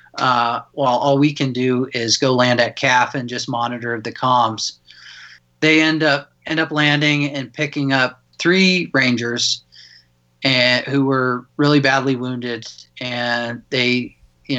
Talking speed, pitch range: 150 wpm, 120-140 Hz